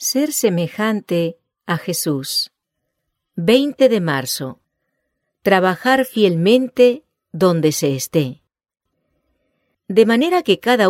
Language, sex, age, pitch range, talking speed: English, female, 40-59, 155-230 Hz, 90 wpm